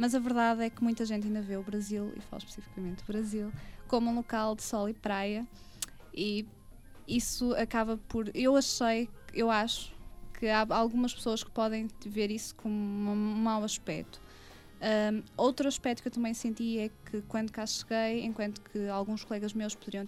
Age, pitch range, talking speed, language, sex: 20-39, 210-240 Hz, 180 wpm, Portuguese, female